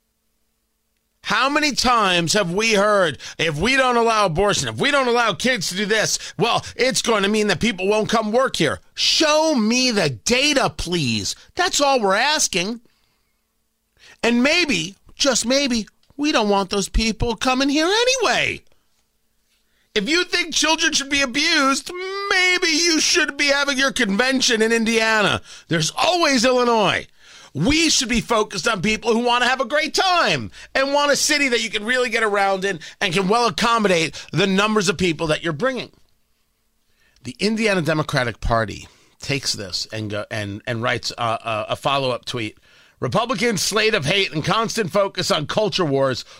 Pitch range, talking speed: 175-260 Hz, 170 wpm